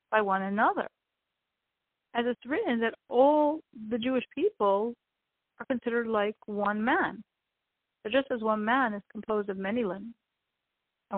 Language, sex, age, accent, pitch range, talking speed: English, female, 40-59, American, 195-245 Hz, 145 wpm